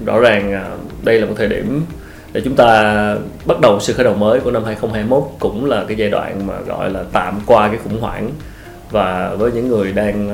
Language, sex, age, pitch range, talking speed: Vietnamese, male, 20-39, 100-140 Hz, 215 wpm